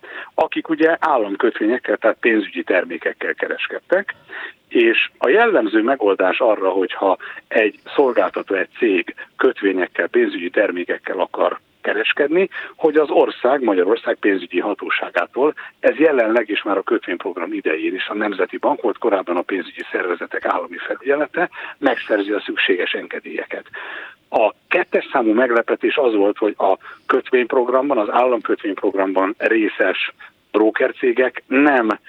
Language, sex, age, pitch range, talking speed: Hungarian, male, 60-79, 320-415 Hz, 120 wpm